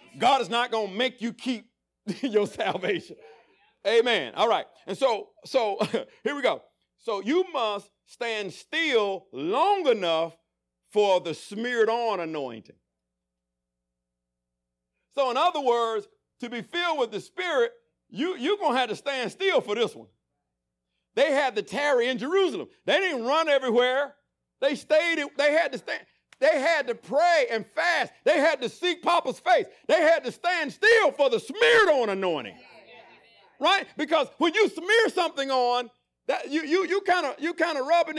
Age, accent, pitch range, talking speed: 50-69, American, 215-345 Hz, 165 wpm